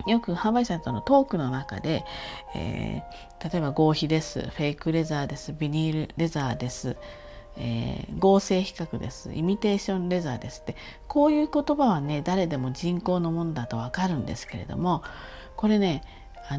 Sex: female